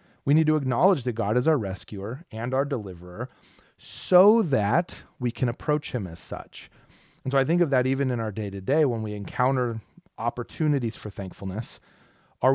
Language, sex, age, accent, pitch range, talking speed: English, male, 30-49, American, 100-135 Hz, 175 wpm